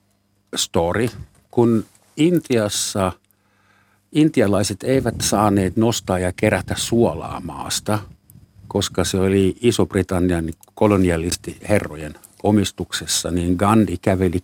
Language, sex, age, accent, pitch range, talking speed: Finnish, male, 60-79, native, 95-115 Hz, 85 wpm